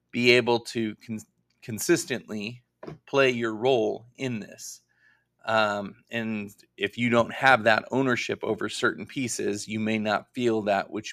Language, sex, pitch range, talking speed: English, male, 105-130 Hz, 140 wpm